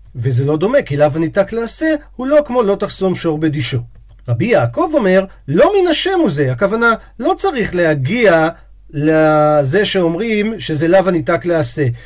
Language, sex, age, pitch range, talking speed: Hebrew, male, 40-59, 150-240 Hz, 160 wpm